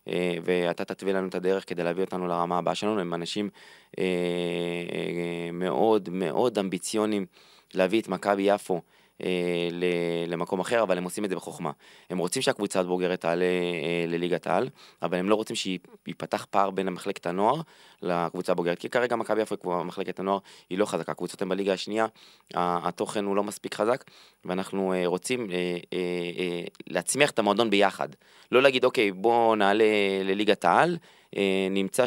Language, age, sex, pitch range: Hebrew, 20-39, male, 90-100 Hz